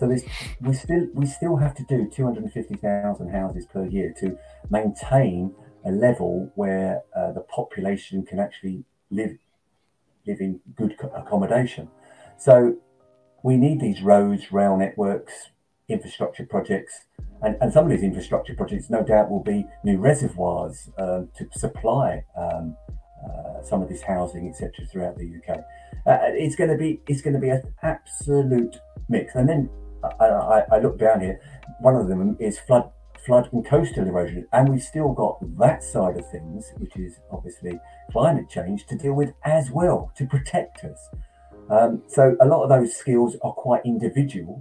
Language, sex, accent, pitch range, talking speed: English, male, British, 100-140 Hz, 170 wpm